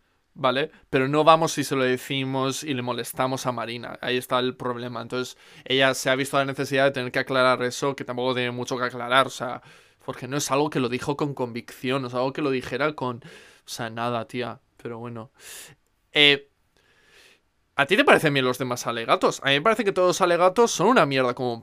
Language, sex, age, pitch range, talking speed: Spanish, male, 20-39, 130-155 Hz, 225 wpm